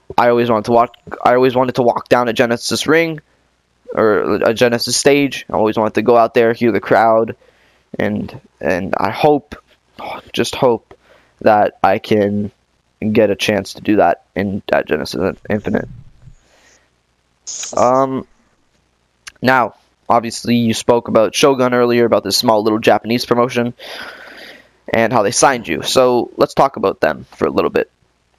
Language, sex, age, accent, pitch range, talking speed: English, male, 10-29, American, 105-125 Hz, 160 wpm